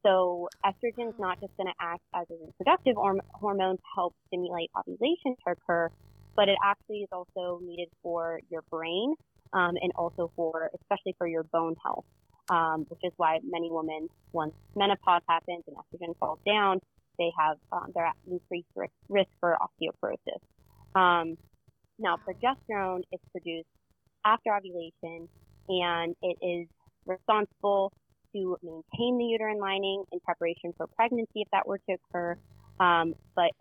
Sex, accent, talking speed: female, American, 150 wpm